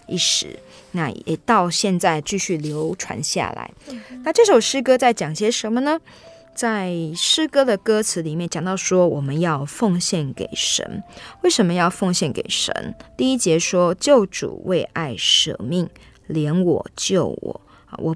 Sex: female